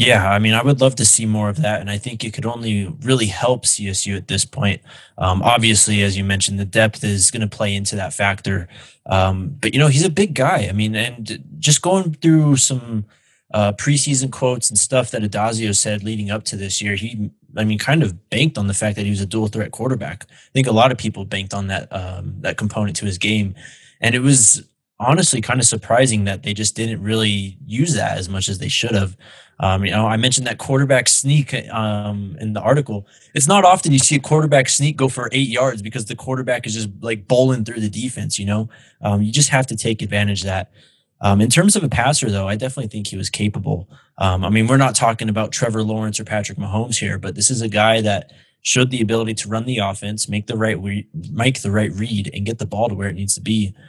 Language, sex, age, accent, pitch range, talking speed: English, male, 20-39, American, 100-125 Hz, 245 wpm